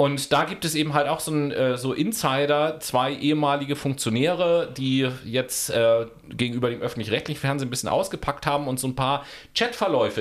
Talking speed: 175 wpm